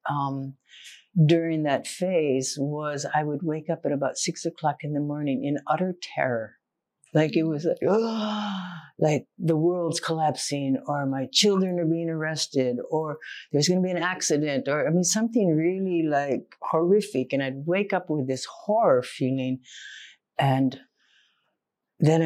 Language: English